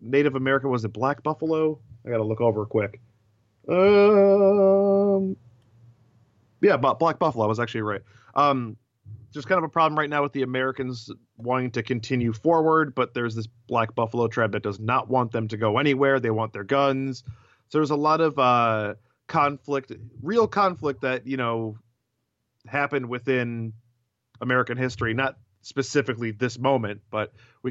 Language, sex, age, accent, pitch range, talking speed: English, male, 30-49, American, 115-135 Hz, 165 wpm